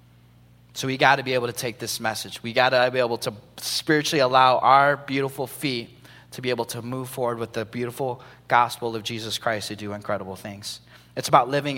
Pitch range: 115-145 Hz